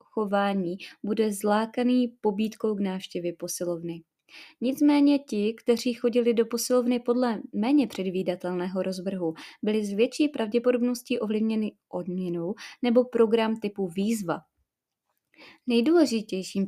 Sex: female